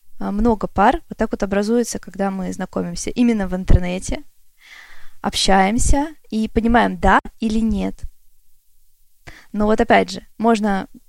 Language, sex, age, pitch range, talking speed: Russian, female, 20-39, 195-240 Hz, 125 wpm